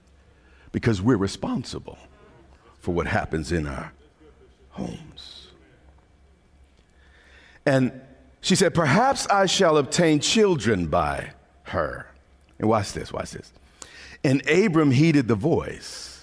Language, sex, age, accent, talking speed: English, male, 50-69, American, 105 wpm